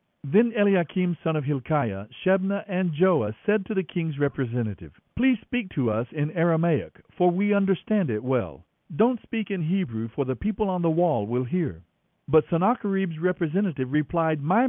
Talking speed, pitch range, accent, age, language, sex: 170 wpm, 140-215 Hz, American, 60-79, English, male